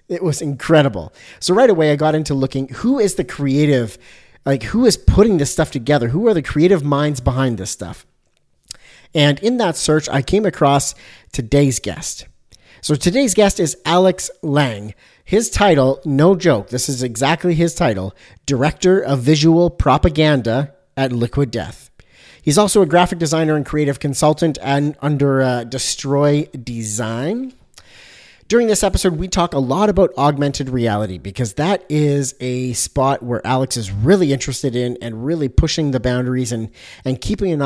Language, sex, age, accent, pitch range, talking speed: English, male, 40-59, American, 125-165 Hz, 165 wpm